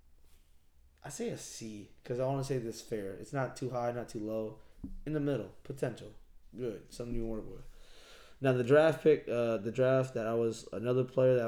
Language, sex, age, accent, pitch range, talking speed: English, male, 20-39, American, 110-125 Hz, 210 wpm